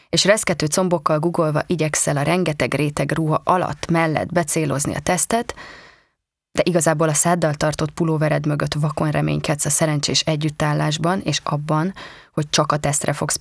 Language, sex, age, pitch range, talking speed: Hungarian, female, 20-39, 150-175 Hz, 150 wpm